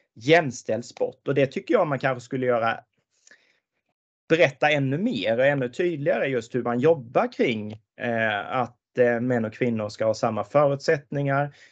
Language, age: Swedish, 30-49